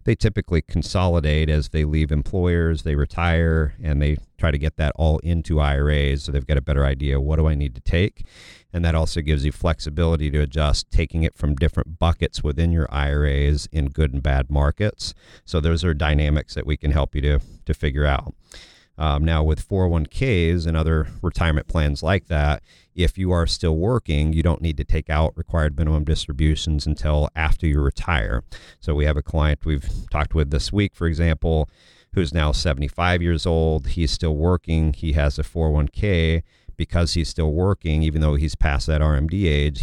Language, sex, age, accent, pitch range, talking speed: English, male, 40-59, American, 75-85 Hz, 195 wpm